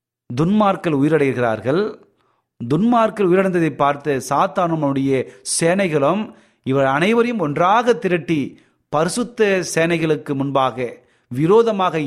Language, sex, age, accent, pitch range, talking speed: Tamil, male, 30-49, native, 120-165 Hz, 75 wpm